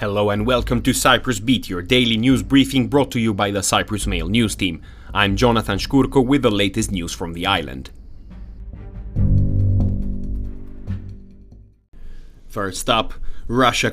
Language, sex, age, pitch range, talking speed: English, male, 30-49, 100-125 Hz, 140 wpm